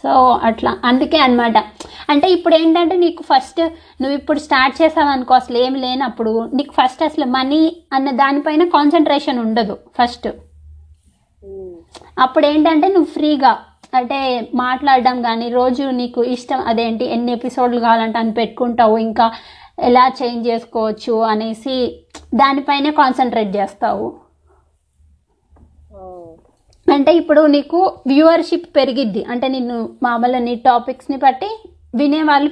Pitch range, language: 230-290 Hz, Telugu